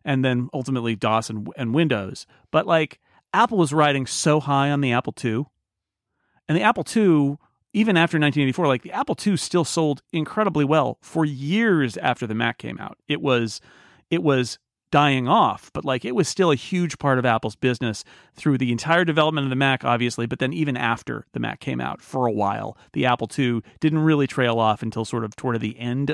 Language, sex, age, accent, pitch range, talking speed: English, male, 40-59, American, 125-160 Hz, 210 wpm